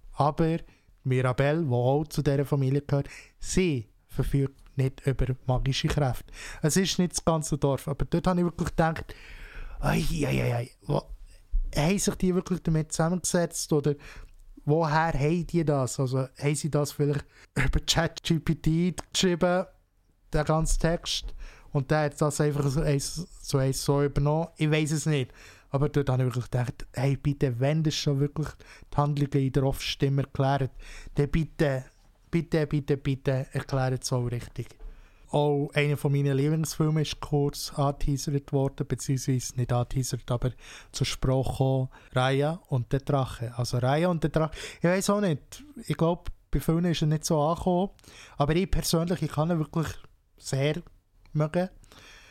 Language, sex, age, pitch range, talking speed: German, male, 20-39, 130-160 Hz, 155 wpm